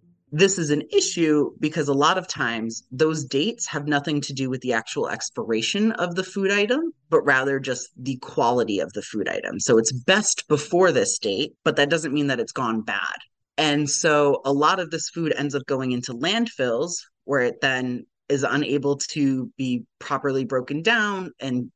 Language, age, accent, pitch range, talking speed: English, 30-49, American, 130-180 Hz, 190 wpm